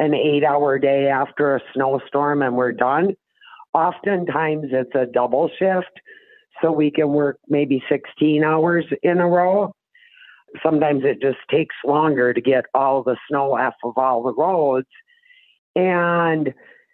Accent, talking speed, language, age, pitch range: American, 145 wpm, English, 50-69, 135-170 Hz